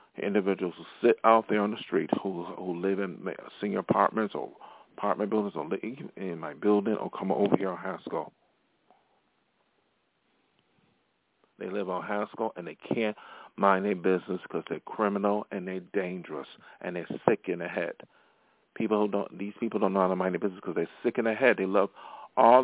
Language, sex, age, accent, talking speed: English, male, 40-59, American, 190 wpm